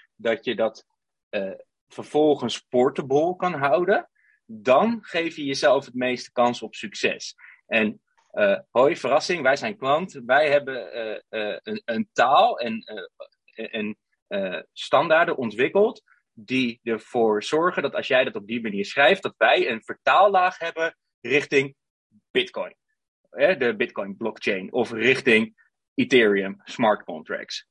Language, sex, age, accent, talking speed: Dutch, male, 30-49, Dutch, 140 wpm